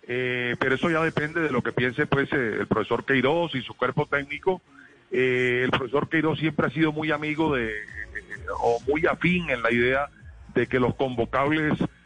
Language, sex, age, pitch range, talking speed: Spanish, male, 40-59, 120-150 Hz, 190 wpm